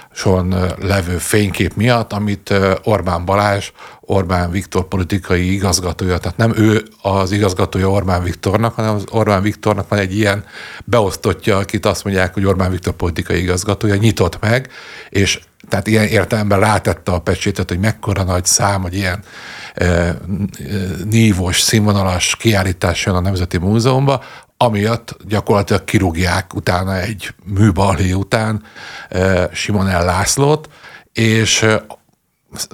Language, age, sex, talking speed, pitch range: Hungarian, 50-69, male, 120 wpm, 95-110 Hz